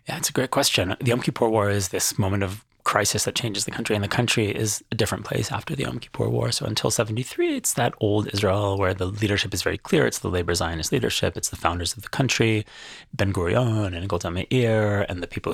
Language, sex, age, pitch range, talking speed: English, male, 30-49, 95-115 Hz, 235 wpm